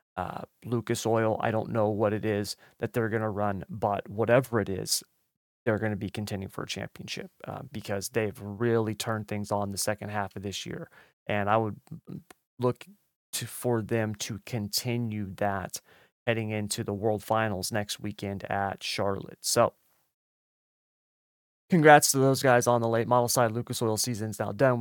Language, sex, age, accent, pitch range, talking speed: English, male, 30-49, American, 105-120 Hz, 175 wpm